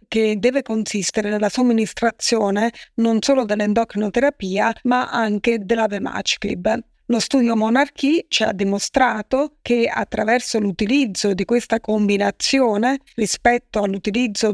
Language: Italian